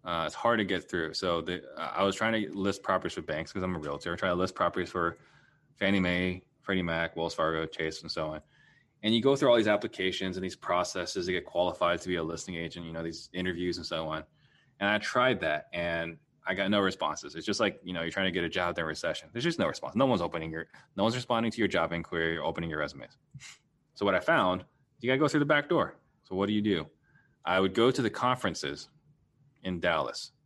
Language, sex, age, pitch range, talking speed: English, male, 20-39, 85-105 Hz, 250 wpm